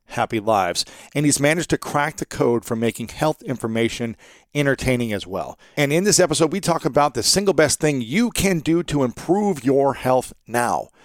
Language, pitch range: English, 120-155 Hz